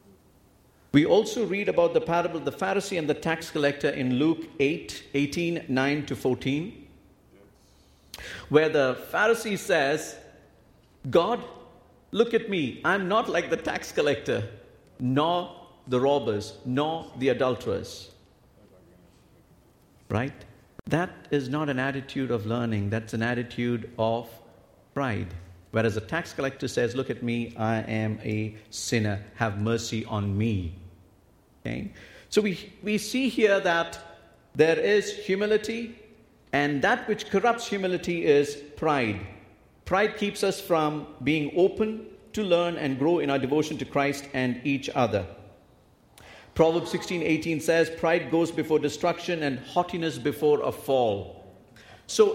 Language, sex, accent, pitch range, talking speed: English, male, Indian, 115-175 Hz, 135 wpm